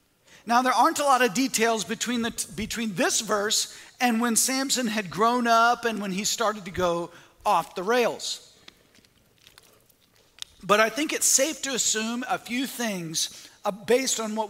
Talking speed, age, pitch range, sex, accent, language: 160 wpm, 40-59, 205-255 Hz, male, American, English